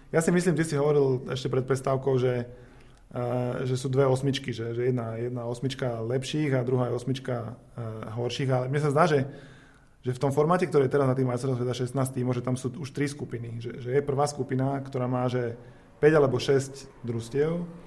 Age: 20-39